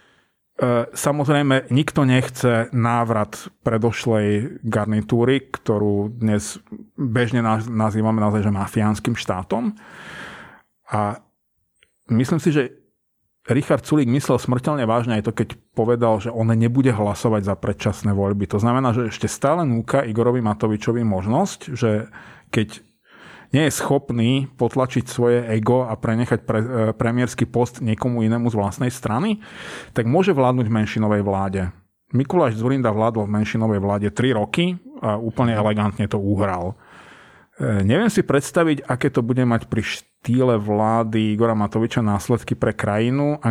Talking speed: 135 wpm